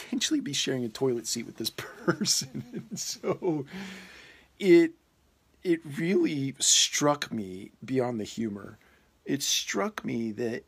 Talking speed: 120 wpm